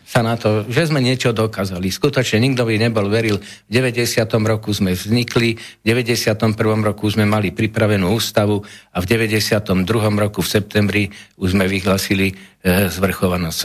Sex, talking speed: male, 155 wpm